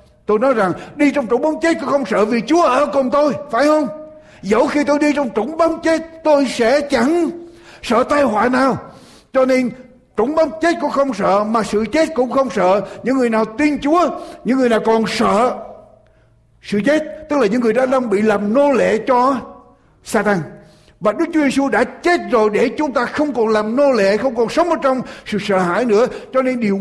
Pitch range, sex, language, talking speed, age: 210-285 Hz, male, Russian, 220 wpm, 60-79